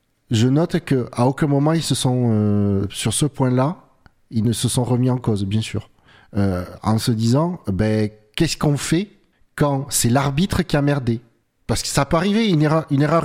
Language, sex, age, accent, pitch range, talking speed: French, male, 40-59, French, 115-145 Hz, 195 wpm